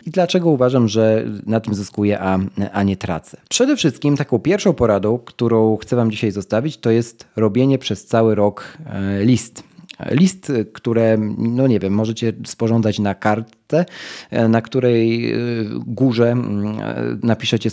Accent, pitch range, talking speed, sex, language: native, 105-130 Hz, 140 wpm, male, Polish